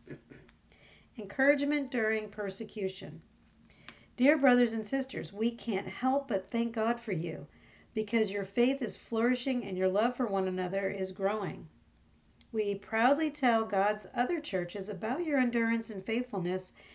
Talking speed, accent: 140 wpm, American